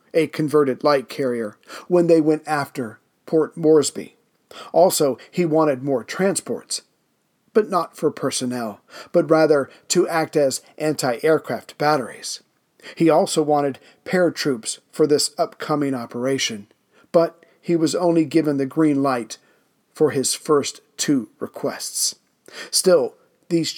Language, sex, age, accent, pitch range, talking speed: English, male, 40-59, American, 135-165 Hz, 125 wpm